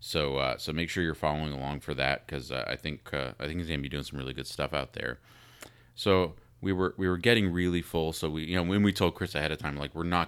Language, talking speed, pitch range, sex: English, 290 wpm, 75-90 Hz, male